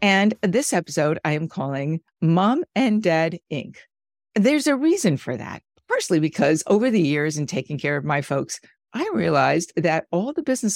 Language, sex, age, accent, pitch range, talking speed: English, female, 50-69, American, 155-235 Hz, 180 wpm